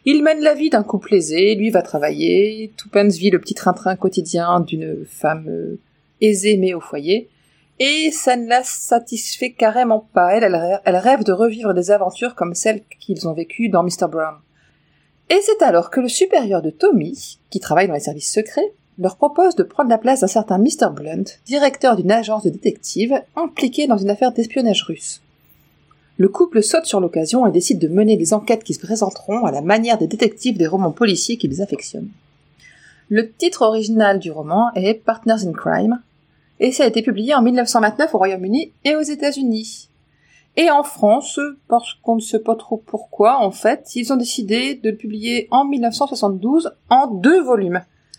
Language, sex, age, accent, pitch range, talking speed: French, female, 30-49, French, 190-250 Hz, 185 wpm